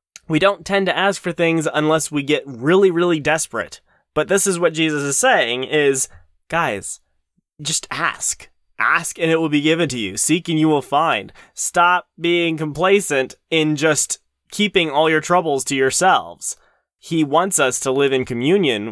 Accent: American